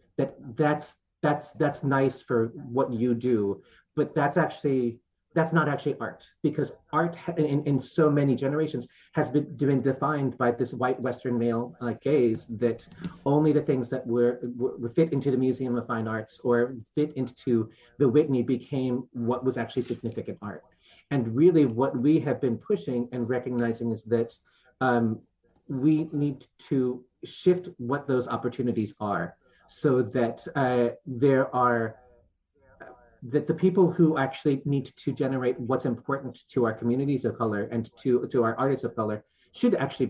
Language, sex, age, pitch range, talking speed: English, male, 40-59, 120-140 Hz, 160 wpm